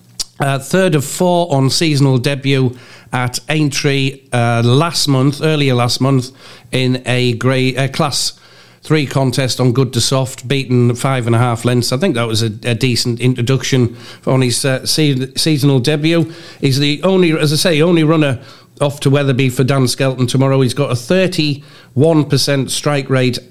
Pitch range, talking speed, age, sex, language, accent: 125-145 Hz, 170 wpm, 50-69, male, English, British